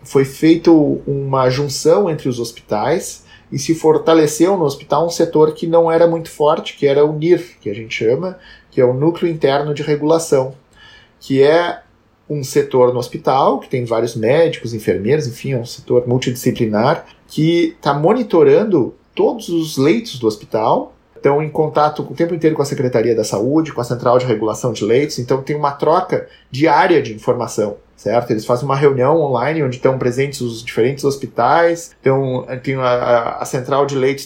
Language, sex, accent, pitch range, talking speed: Portuguese, male, Brazilian, 125-160 Hz, 180 wpm